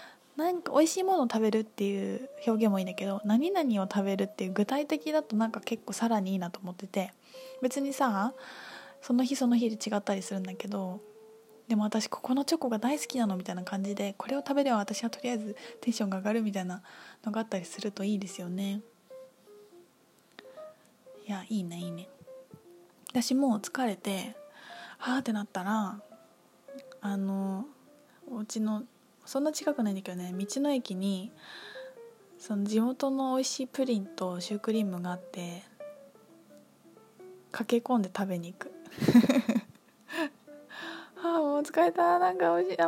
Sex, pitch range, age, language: female, 195-270 Hz, 20-39, Japanese